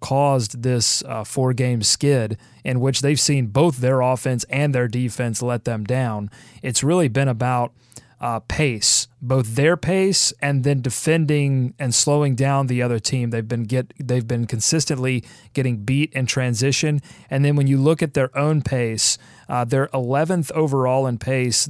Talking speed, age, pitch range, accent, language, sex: 170 wpm, 30-49, 125-150 Hz, American, English, male